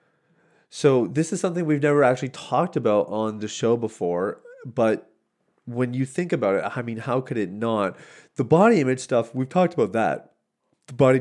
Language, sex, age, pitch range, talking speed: English, male, 30-49, 100-125 Hz, 185 wpm